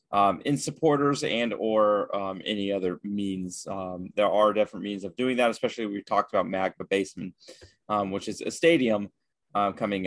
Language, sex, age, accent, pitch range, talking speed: English, male, 30-49, American, 100-120 Hz, 180 wpm